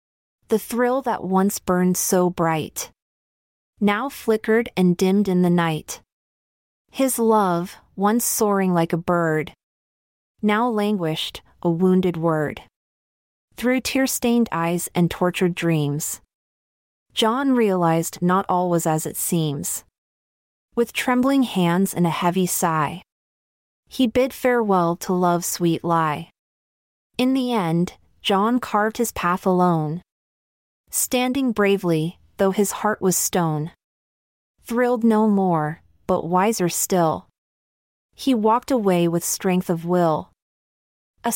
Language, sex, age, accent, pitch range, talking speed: English, female, 30-49, American, 170-225 Hz, 120 wpm